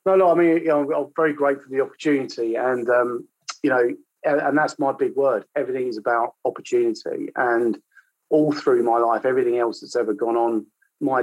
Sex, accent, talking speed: male, British, 175 wpm